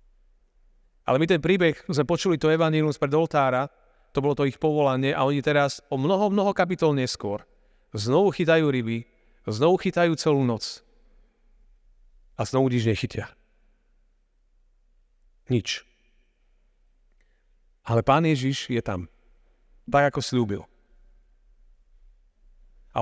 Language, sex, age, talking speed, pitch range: Slovak, male, 40-59, 115 wpm, 115-150 Hz